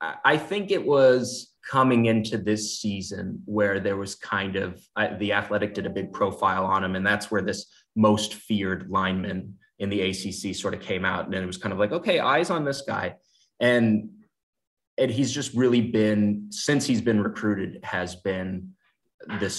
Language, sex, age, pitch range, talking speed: English, male, 20-39, 95-110 Hz, 185 wpm